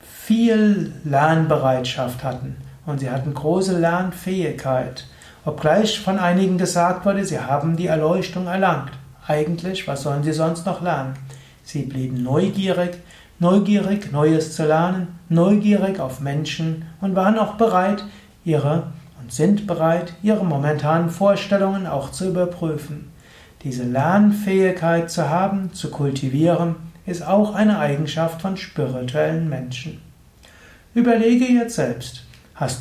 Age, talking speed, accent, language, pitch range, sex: 60-79, 120 wpm, German, German, 145-190 Hz, male